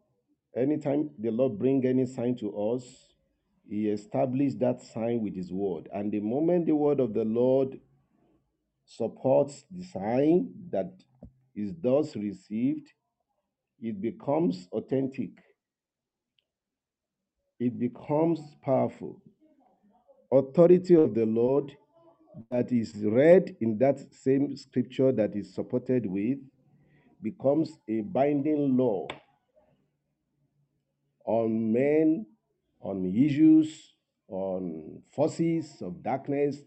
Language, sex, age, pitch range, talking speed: English, male, 50-69, 115-155 Hz, 105 wpm